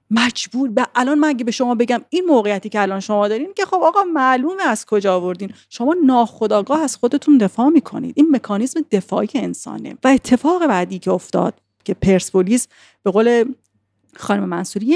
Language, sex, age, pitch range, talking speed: Persian, female, 40-59, 190-245 Hz, 170 wpm